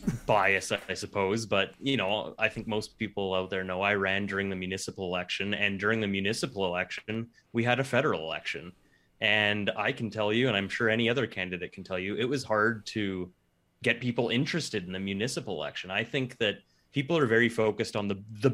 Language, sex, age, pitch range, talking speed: English, male, 20-39, 95-120 Hz, 205 wpm